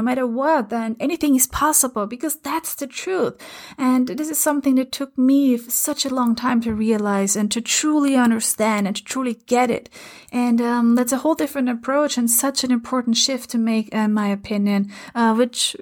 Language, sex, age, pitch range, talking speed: English, female, 30-49, 215-260 Hz, 205 wpm